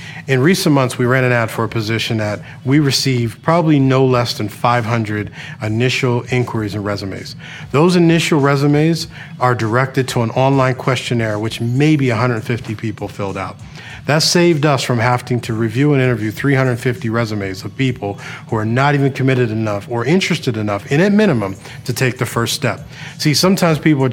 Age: 40-59